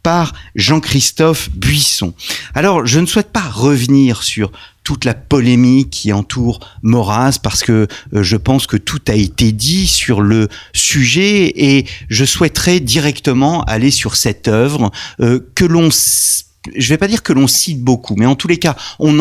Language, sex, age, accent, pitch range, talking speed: French, male, 40-59, French, 105-145 Hz, 170 wpm